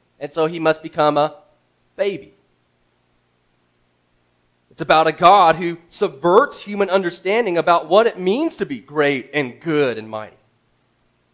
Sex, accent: male, American